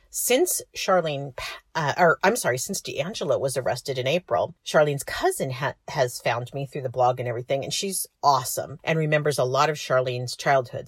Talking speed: 175 wpm